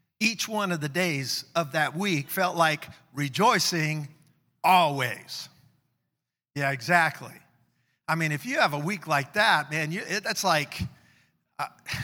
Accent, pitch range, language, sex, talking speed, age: American, 155-195 Hz, English, male, 145 wpm, 50-69